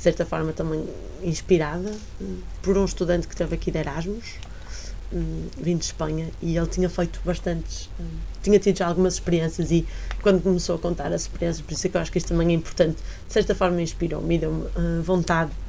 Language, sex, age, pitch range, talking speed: Portuguese, female, 20-39, 165-190 Hz, 210 wpm